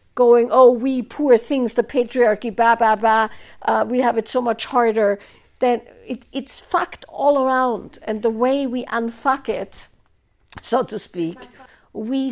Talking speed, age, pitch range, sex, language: 145 wpm, 50-69, 195-245 Hz, female, English